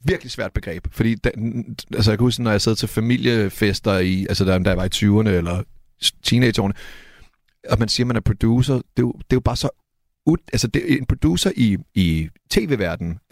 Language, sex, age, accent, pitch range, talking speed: Danish, male, 30-49, native, 100-120 Hz, 200 wpm